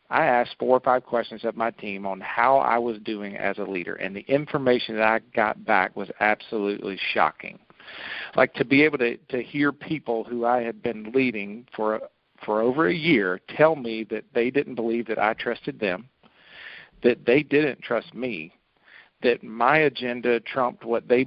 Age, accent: 50-69, American